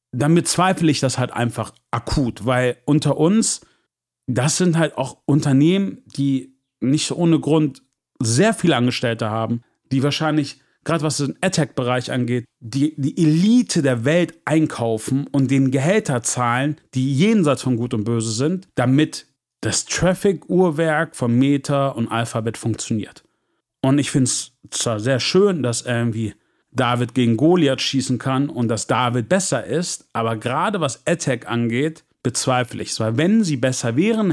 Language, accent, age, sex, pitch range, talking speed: German, German, 40-59, male, 120-155 Hz, 155 wpm